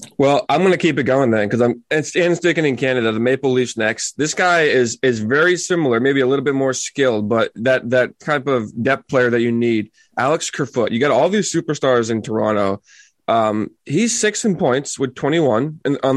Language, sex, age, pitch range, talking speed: English, male, 20-39, 115-140 Hz, 210 wpm